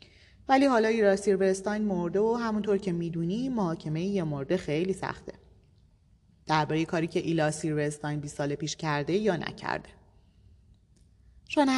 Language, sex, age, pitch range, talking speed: Persian, female, 30-49, 130-200 Hz, 130 wpm